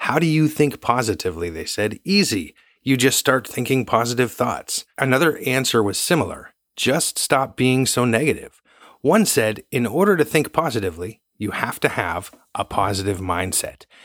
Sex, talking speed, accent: male, 160 wpm, American